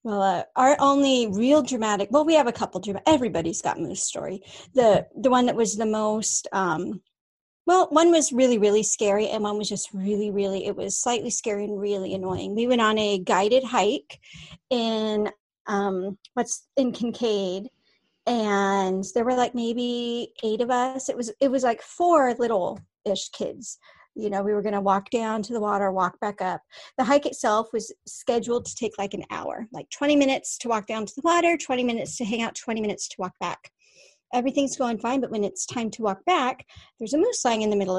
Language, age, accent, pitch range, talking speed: English, 40-59, American, 210-275 Hz, 205 wpm